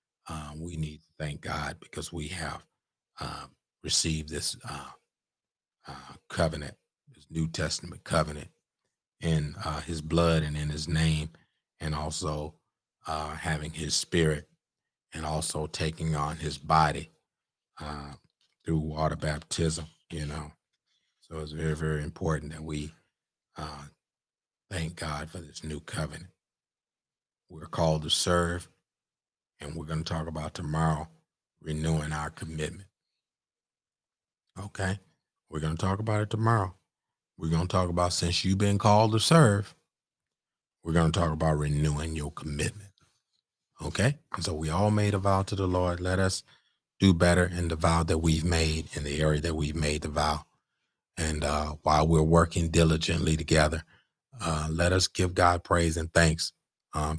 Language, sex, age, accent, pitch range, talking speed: English, male, 30-49, American, 75-85 Hz, 155 wpm